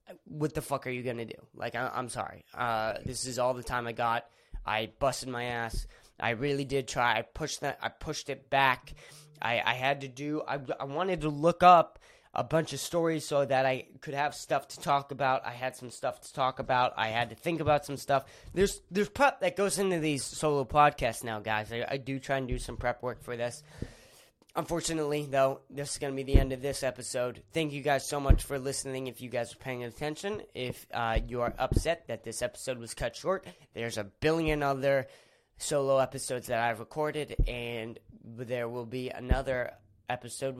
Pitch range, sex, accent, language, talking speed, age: 120-150 Hz, male, American, English, 215 wpm, 20-39